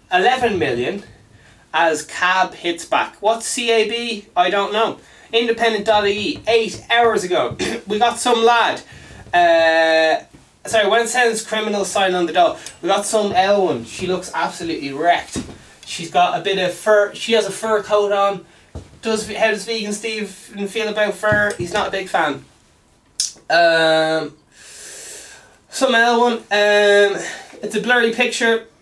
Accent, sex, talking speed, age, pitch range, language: Irish, male, 140 wpm, 20-39, 165-220 Hz, English